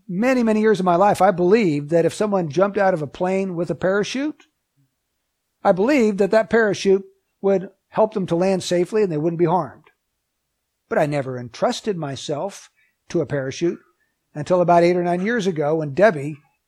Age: 60-79